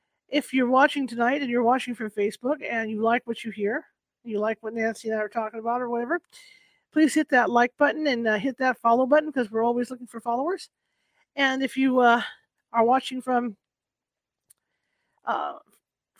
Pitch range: 225-275 Hz